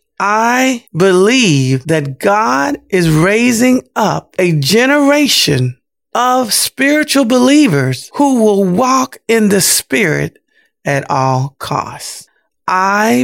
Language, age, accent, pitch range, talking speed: English, 50-69, American, 140-230 Hz, 100 wpm